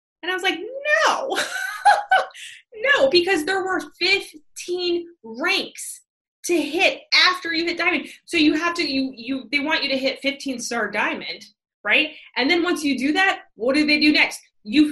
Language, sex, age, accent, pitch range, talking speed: English, female, 20-39, American, 210-310 Hz, 175 wpm